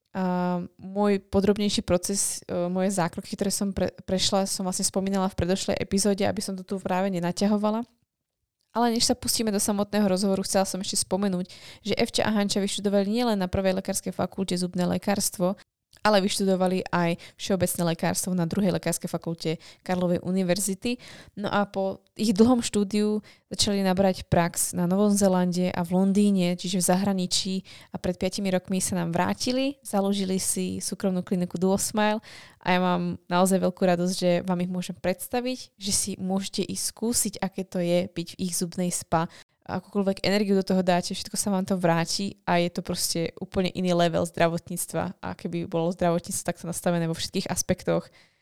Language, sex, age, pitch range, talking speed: Slovak, female, 20-39, 180-205 Hz, 170 wpm